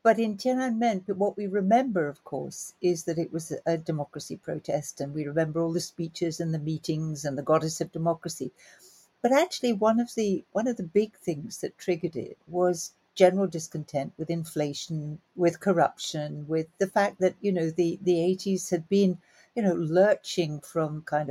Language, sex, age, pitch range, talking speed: English, female, 60-79, 155-195 Hz, 185 wpm